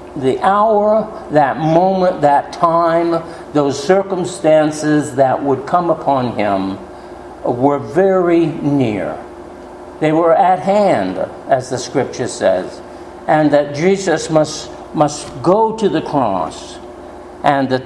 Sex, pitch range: male, 130-175 Hz